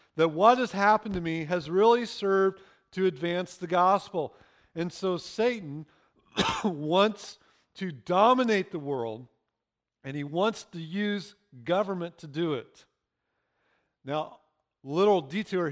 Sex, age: male, 50-69